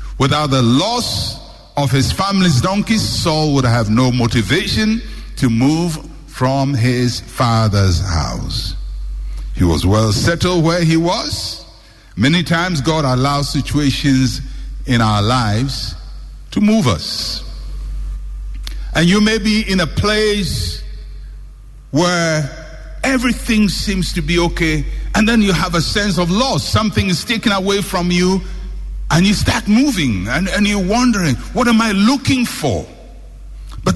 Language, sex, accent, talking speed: English, male, Nigerian, 135 wpm